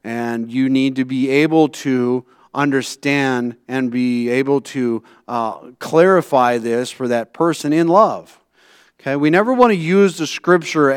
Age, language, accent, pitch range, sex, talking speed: 40-59, English, American, 115-145 Hz, male, 155 wpm